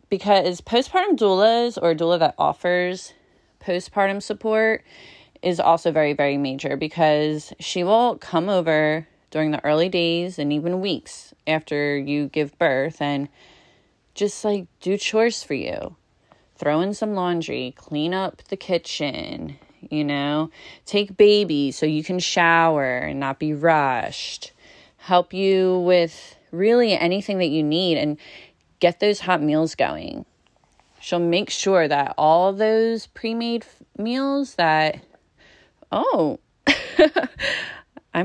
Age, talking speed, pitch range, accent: 30-49, 130 wpm, 150-195 Hz, American